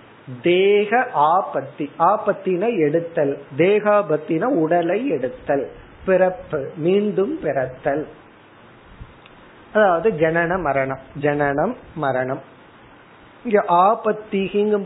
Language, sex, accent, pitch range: Tamil, male, native, 140-175 Hz